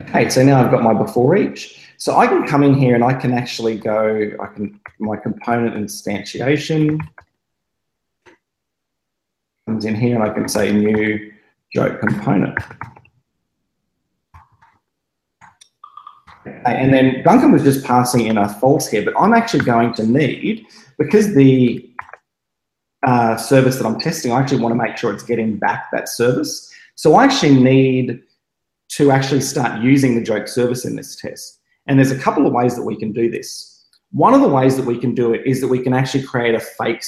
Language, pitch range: English, 115-135 Hz